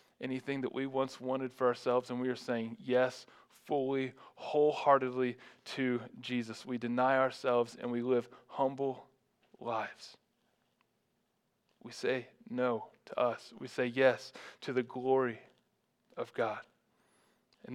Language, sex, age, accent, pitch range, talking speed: English, male, 20-39, American, 125-135 Hz, 130 wpm